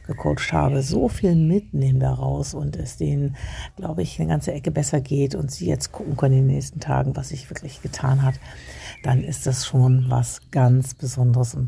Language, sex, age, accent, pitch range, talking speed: German, female, 60-79, German, 130-150 Hz, 200 wpm